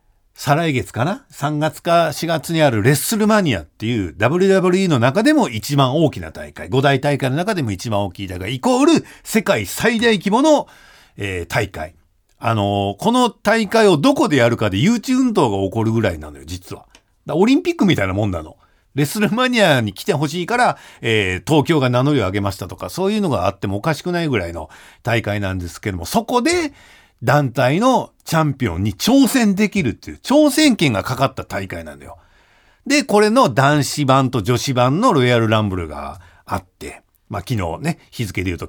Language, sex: Japanese, male